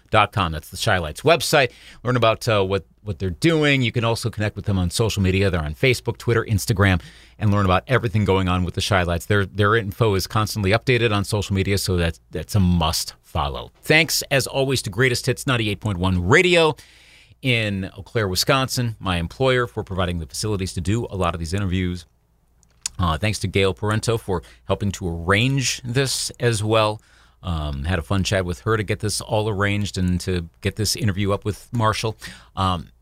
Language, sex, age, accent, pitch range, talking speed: English, male, 40-59, American, 90-115 Hz, 205 wpm